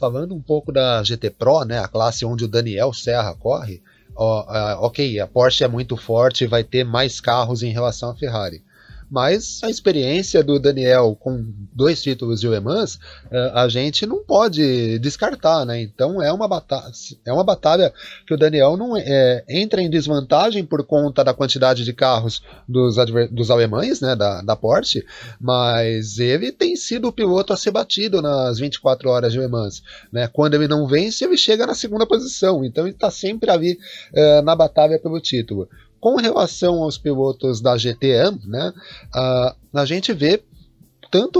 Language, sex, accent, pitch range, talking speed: Portuguese, male, Brazilian, 120-170 Hz, 175 wpm